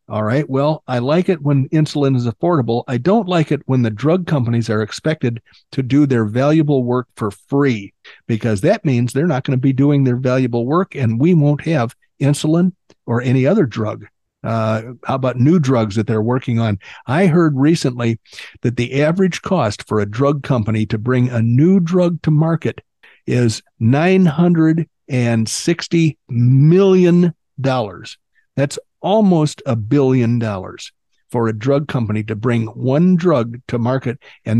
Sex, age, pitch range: male, 50-69, 115-155 Hz